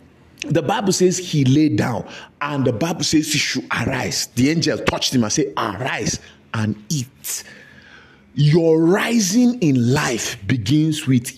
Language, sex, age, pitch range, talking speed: English, male, 50-69, 125-170 Hz, 150 wpm